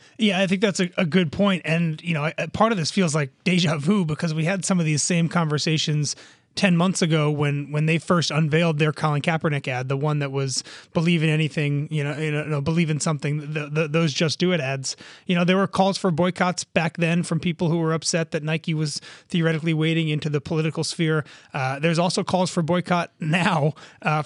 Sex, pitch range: male, 155-180 Hz